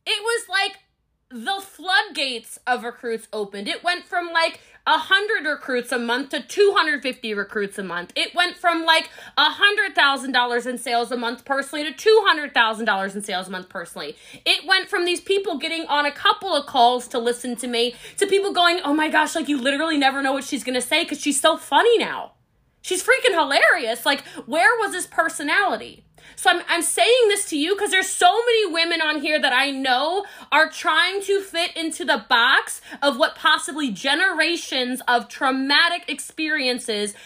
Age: 30-49